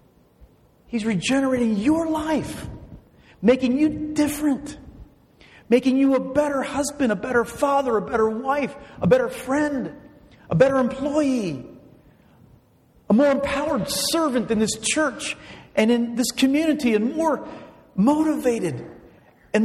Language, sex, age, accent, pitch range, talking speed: English, male, 40-59, American, 185-275 Hz, 120 wpm